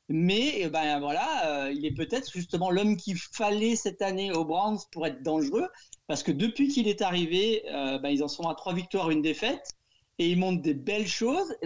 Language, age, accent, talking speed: French, 40-59, French, 210 wpm